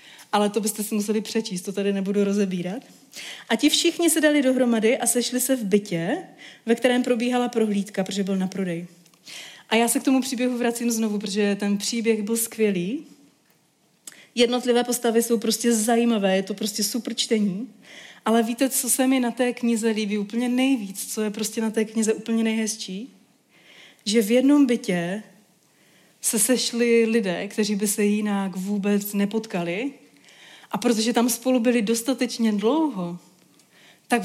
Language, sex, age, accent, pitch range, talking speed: Czech, female, 30-49, native, 205-245 Hz, 160 wpm